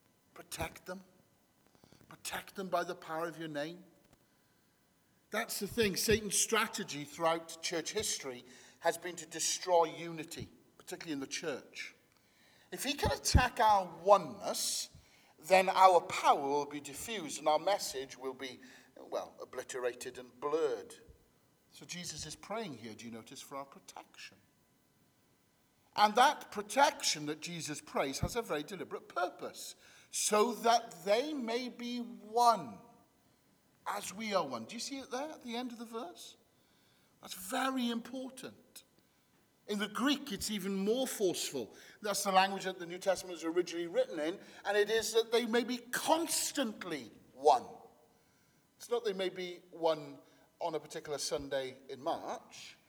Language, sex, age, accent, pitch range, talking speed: English, male, 50-69, British, 160-235 Hz, 150 wpm